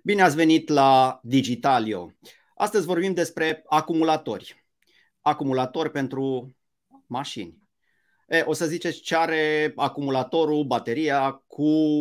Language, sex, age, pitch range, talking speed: Romanian, male, 30-49, 125-160 Hz, 100 wpm